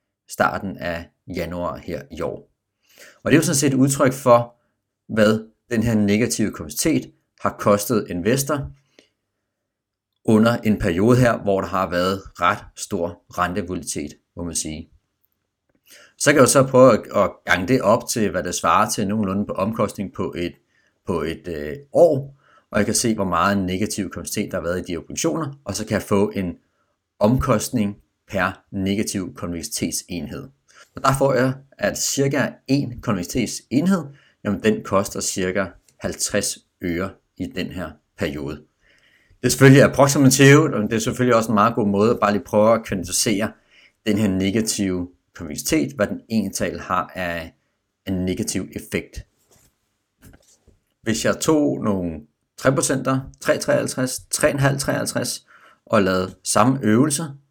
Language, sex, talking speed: Danish, male, 150 wpm